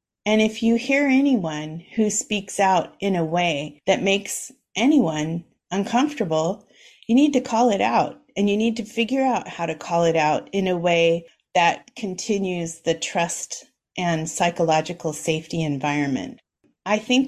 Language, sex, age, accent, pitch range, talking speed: English, female, 30-49, American, 165-205 Hz, 155 wpm